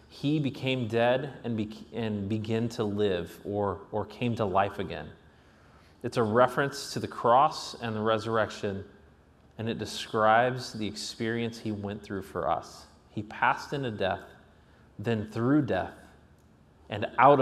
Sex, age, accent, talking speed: male, 30-49, American, 145 wpm